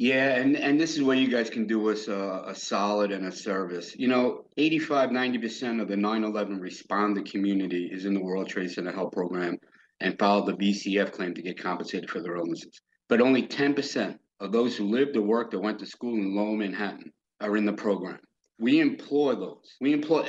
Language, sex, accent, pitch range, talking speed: English, male, American, 110-150 Hz, 205 wpm